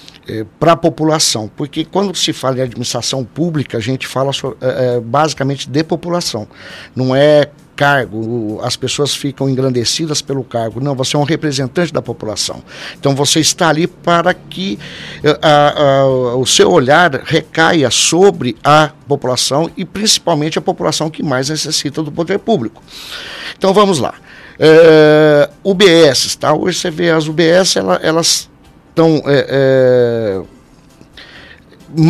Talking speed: 130 wpm